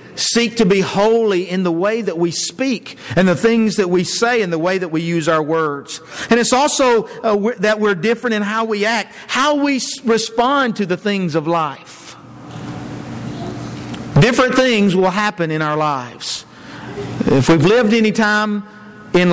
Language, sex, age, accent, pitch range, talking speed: English, male, 50-69, American, 160-230 Hz, 170 wpm